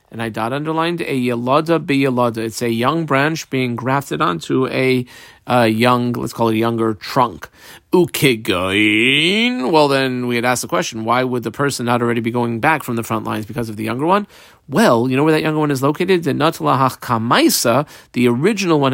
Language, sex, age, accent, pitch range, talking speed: English, male, 40-59, American, 120-160 Hz, 205 wpm